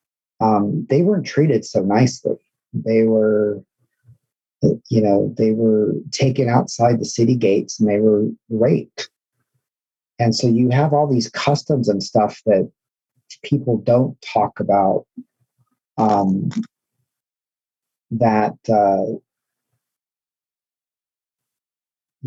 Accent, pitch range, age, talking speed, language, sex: American, 100-115 Hz, 40-59, 100 wpm, English, male